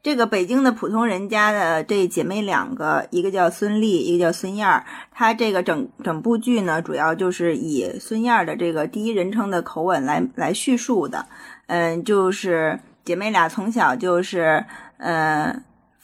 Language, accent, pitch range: Chinese, native, 180-235 Hz